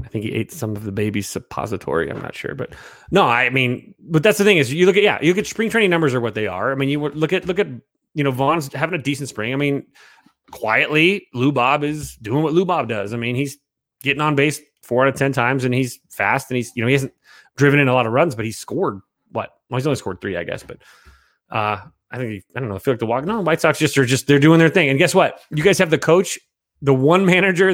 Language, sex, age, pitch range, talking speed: English, male, 30-49, 120-150 Hz, 280 wpm